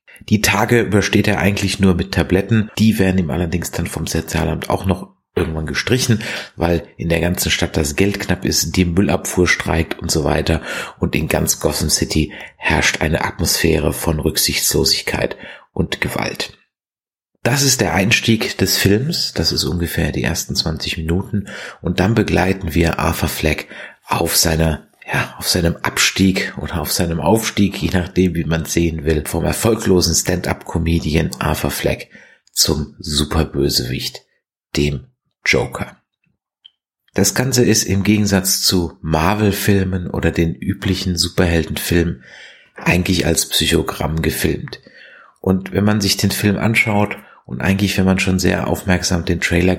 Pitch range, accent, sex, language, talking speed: 80-100 Hz, German, male, German, 145 wpm